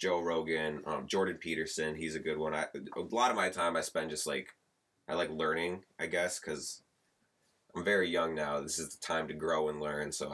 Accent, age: American, 20-39